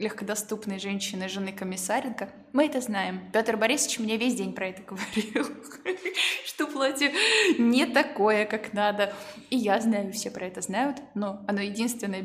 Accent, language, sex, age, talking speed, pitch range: native, Russian, female, 20-39, 150 wpm, 195-260 Hz